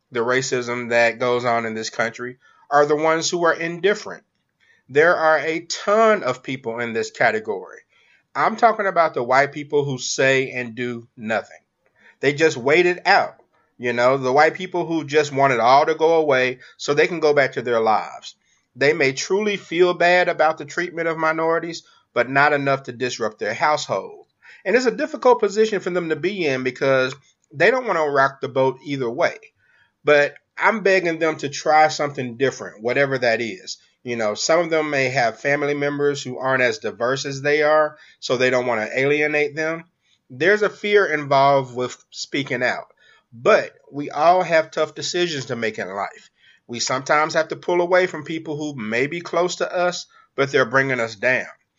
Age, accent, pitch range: 30-49, American, 130-175 Hz